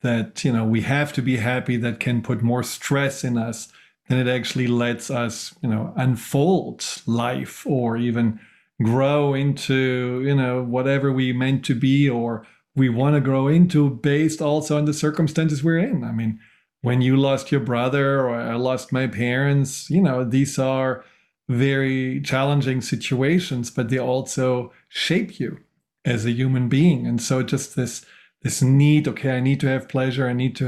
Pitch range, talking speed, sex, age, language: 120-140 Hz, 180 wpm, male, 40-59, English